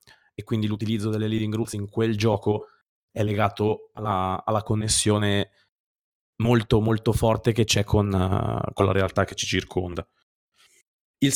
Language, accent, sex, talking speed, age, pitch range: Italian, native, male, 145 wpm, 20-39, 100-120 Hz